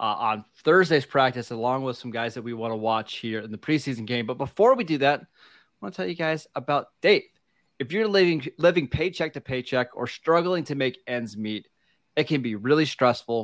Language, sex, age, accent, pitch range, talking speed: English, male, 30-49, American, 115-155 Hz, 220 wpm